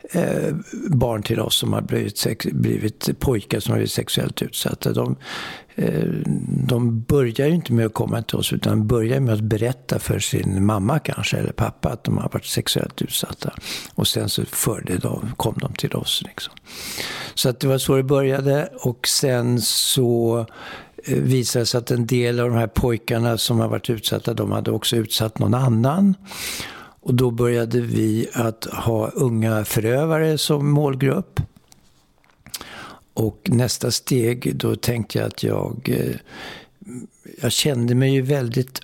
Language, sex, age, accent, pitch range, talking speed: English, male, 60-79, Swedish, 115-130 Hz, 160 wpm